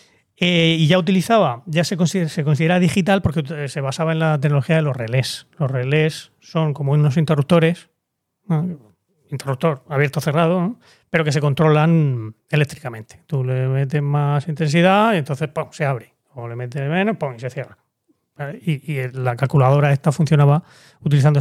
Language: Spanish